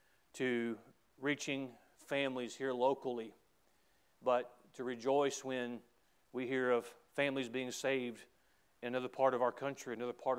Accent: American